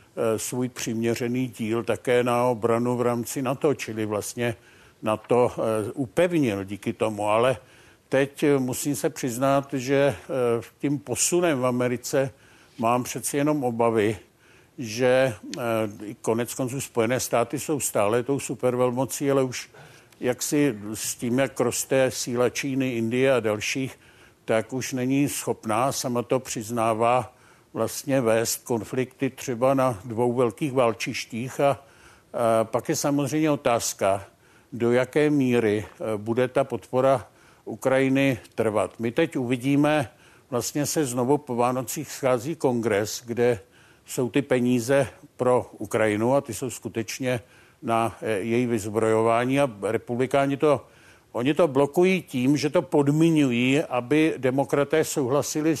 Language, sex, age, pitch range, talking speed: Czech, male, 60-79, 115-140 Hz, 125 wpm